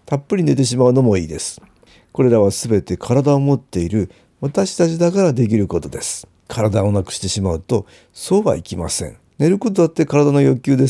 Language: Japanese